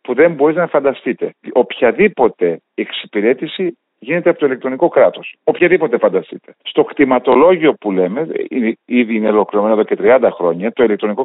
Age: 50-69